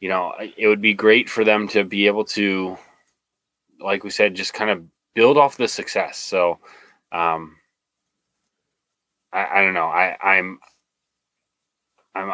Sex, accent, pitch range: male, American, 95-130 Hz